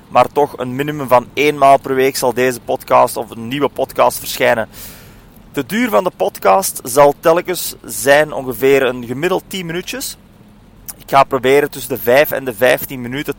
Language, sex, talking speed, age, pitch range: English, male, 180 wpm, 30-49, 120-145 Hz